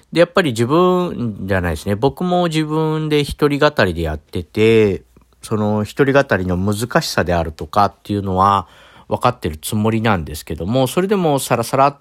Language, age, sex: Japanese, 50-69, male